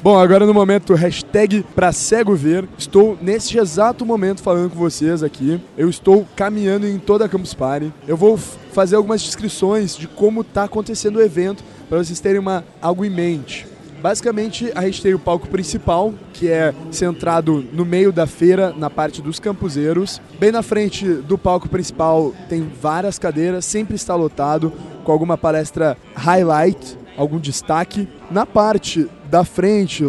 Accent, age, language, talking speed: Brazilian, 20-39, Portuguese, 165 wpm